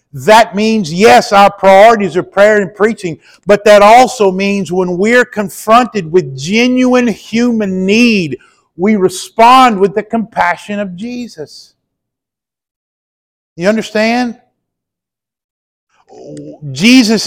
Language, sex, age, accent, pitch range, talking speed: English, male, 50-69, American, 175-230 Hz, 105 wpm